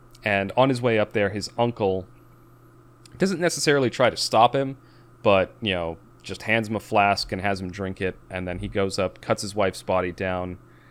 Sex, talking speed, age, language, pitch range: male, 205 wpm, 30-49, English, 95-115 Hz